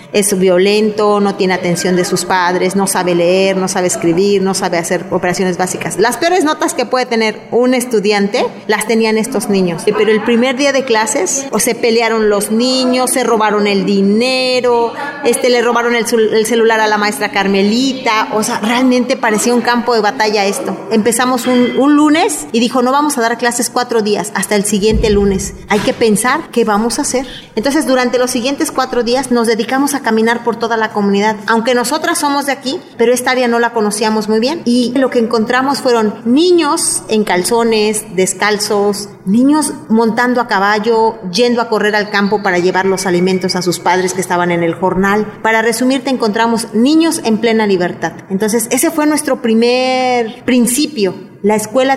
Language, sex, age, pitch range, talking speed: Spanish, female, 40-59, 205-250 Hz, 185 wpm